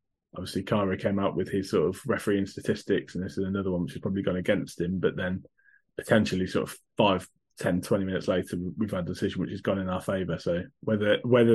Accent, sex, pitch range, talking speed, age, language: British, male, 95-115 Hz, 230 wpm, 20-39, English